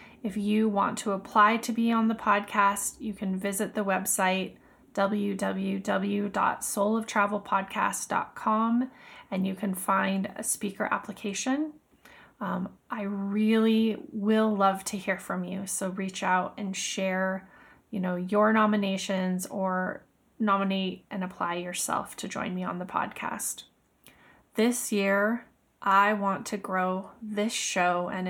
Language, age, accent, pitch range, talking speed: English, 20-39, American, 190-220 Hz, 130 wpm